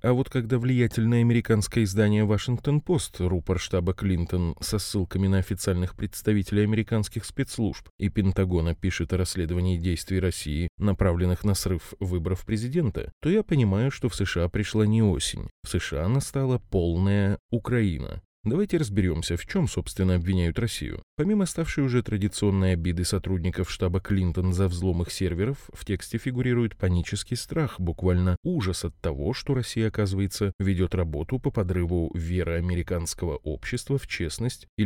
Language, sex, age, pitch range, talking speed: Russian, male, 20-39, 90-120 Hz, 145 wpm